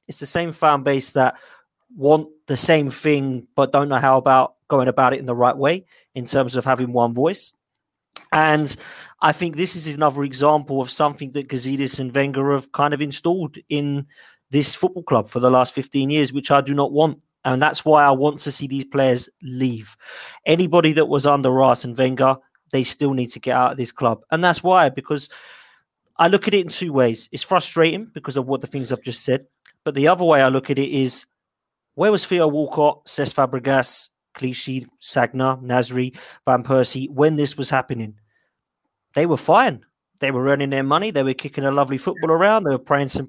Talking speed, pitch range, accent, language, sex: 205 wpm, 130-150 Hz, British, English, male